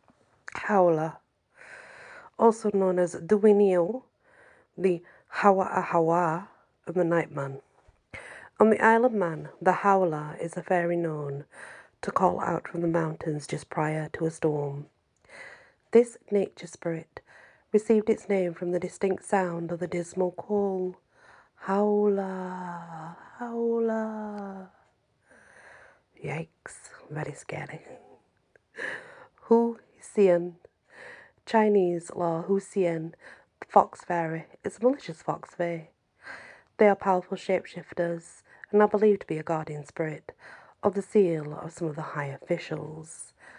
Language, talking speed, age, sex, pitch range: English, 115 wpm, 40-59, female, 165-210 Hz